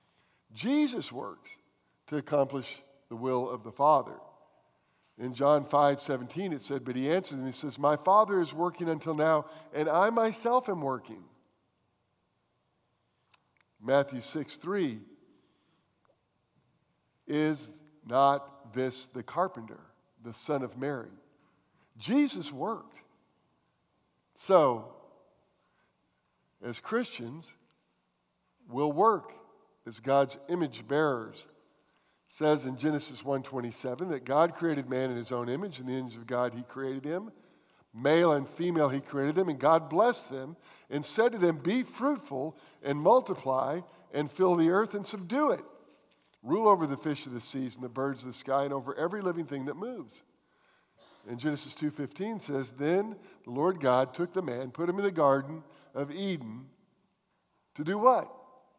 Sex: male